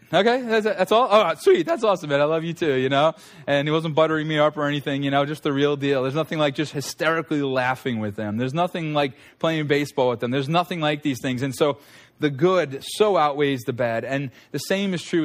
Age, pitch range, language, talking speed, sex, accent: 20-39, 125-150 Hz, English, 240 wpm, male, American